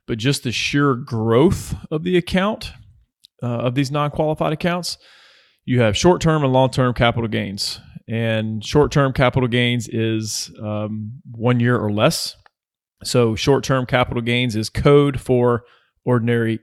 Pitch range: 110-140 Hz